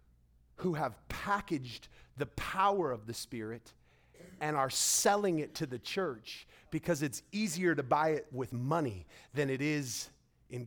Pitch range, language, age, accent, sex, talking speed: 110-155 Hz, English, 40-59, American, male, 150 wpm